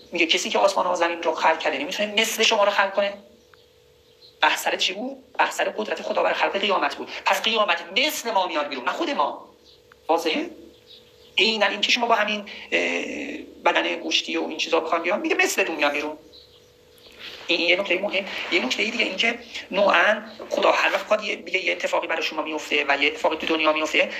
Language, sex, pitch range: English, male, 165-245 Hz